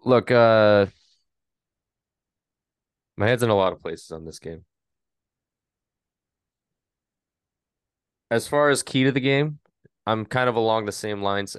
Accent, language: American, English